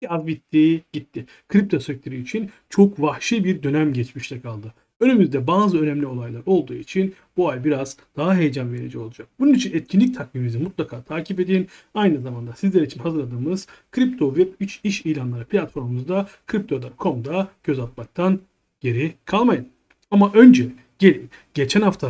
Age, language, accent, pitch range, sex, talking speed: 40-59, Turkish, native, 140-200 Hz, male, 145 wpm